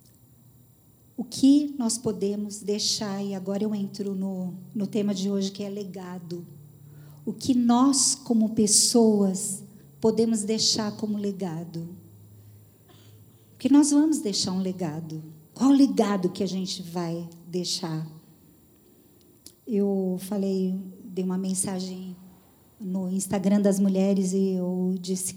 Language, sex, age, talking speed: Portuguese, female, 50-69, 125 wpm